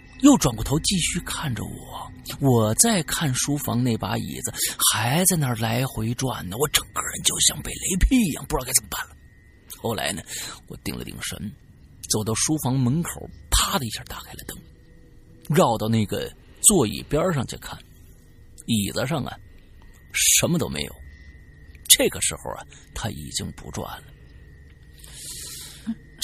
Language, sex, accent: Chinese, male, native